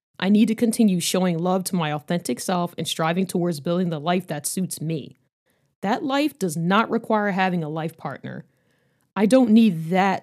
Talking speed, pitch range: 190 wpm, 165-220 Hz